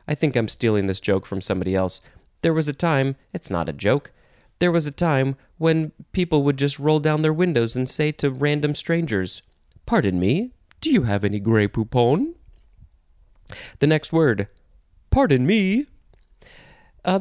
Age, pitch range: 20-39, 105-155 Hz